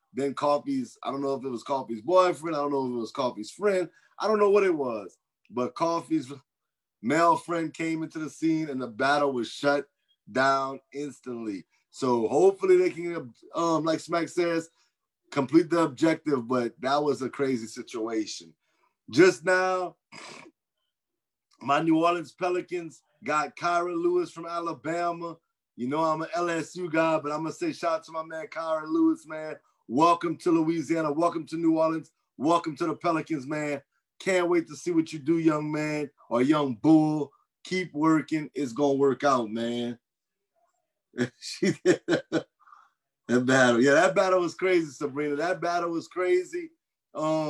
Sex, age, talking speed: male, 30-49, 165 wpm